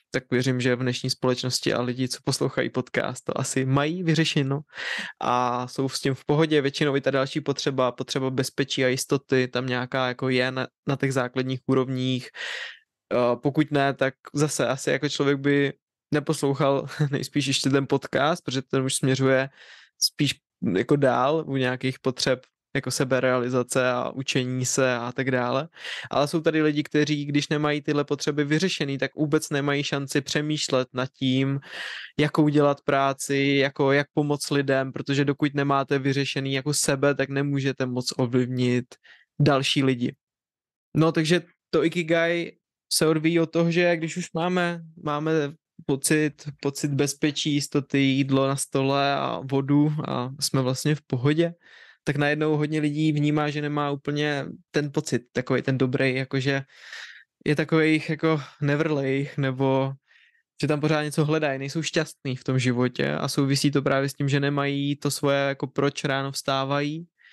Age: 20-39